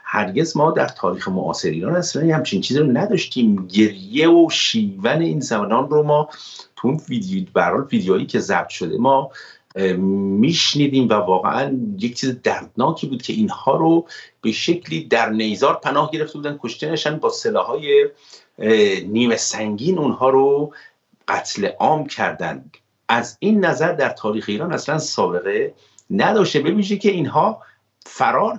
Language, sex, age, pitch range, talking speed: Persian, male, 50-69, 115-180 Hz, 145 wpm